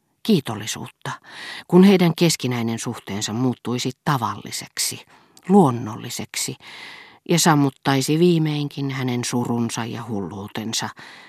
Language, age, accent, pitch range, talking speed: Finnish, 40-59, native, 115-160 Hz, 80 wpm